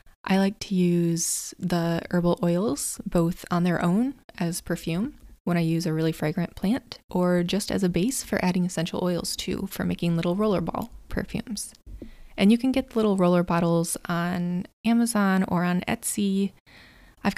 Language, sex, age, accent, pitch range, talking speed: English, female, 20-39, American, 175-210 Hz, 170 wpm